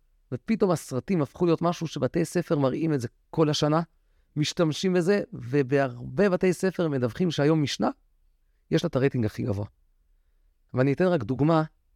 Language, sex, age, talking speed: Hebrew, male, 40-59, 150 wpm